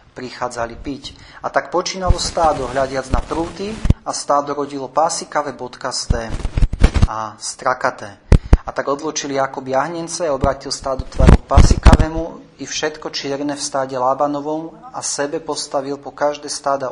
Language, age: Slovak, 30-49